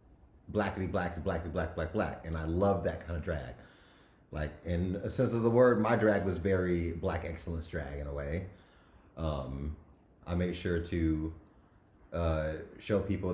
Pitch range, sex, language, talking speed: 80-100 Hz, male, English, 170 wpm